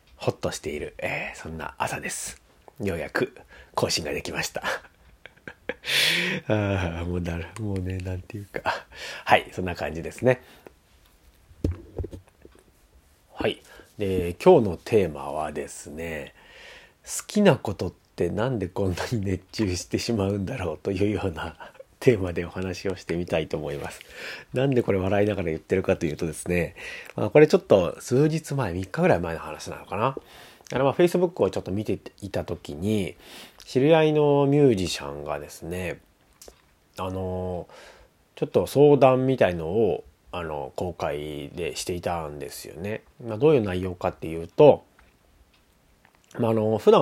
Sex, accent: male, native